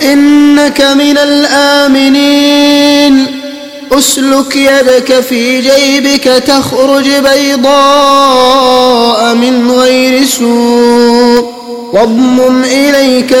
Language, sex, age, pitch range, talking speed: Arabic, male, 20-39, 250-280 Hz, 65 wpm